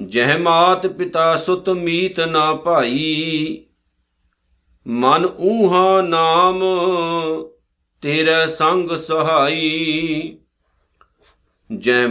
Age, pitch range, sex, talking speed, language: 50-69, 140-180 Hz, male, 70 wpm, Punjabi